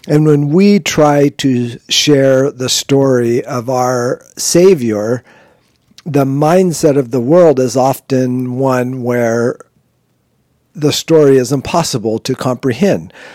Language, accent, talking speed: English, American, 115 wpm